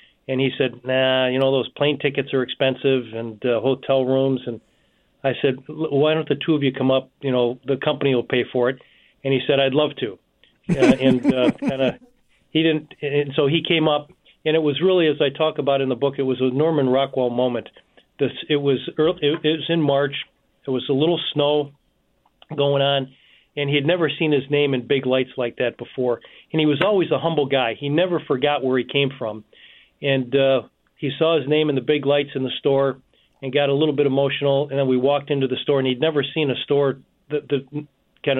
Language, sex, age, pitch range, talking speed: English, male, 40-59, 130-145 Hz, 230 wpm